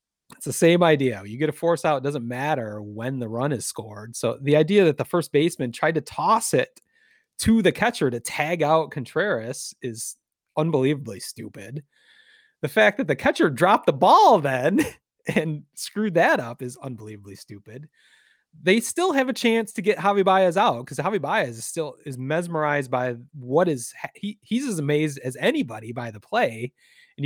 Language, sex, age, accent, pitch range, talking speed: English, male, 30-49, American, 130-180 Hz, 185 wpm